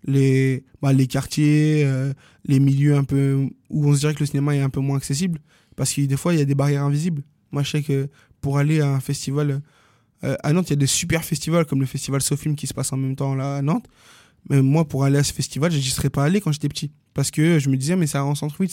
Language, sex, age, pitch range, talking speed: French, male, 20-39, 135-155 Hz, 270 wpm